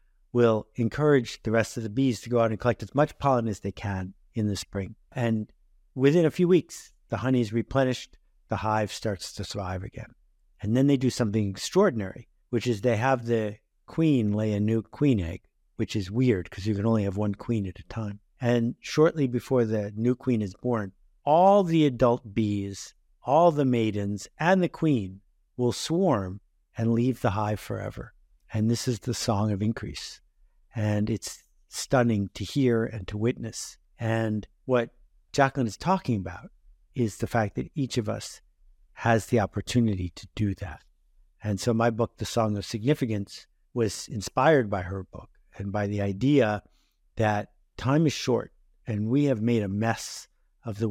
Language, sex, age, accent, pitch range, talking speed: English, male, 50-69, American, 105-125 Hz, 180 wpm